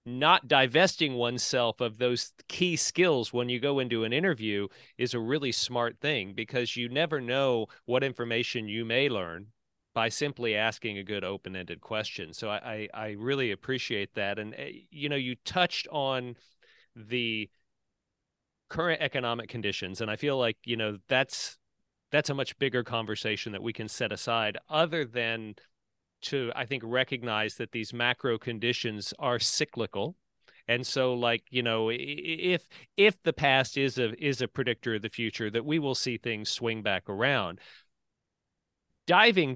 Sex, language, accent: male, English, American